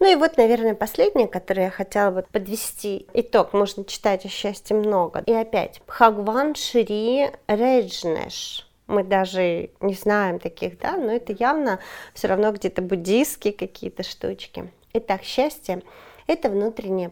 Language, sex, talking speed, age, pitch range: Russian, female, 145 wpm, 30-49, 185-225 Hz